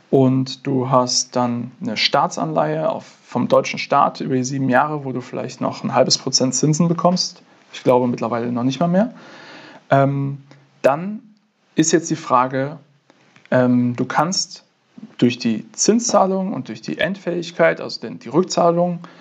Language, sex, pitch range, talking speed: German, male, 130-180 Hz, 150 wpm